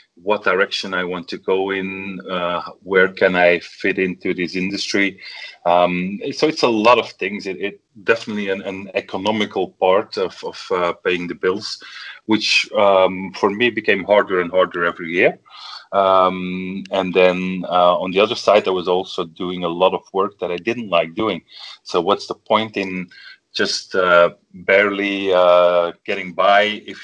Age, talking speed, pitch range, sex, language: 30-49, 175 wpm, 85-100 Hz, male, English